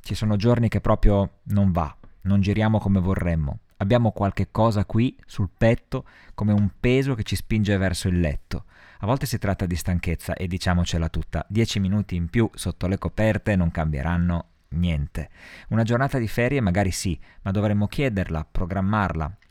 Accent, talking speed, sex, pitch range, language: native, 170 wpm, male, 85-110 Hz, Italian